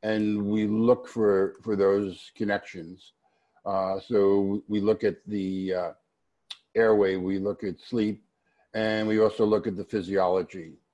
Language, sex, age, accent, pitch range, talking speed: English, male, 50-69, American, 95-110 Hz, 145 wpm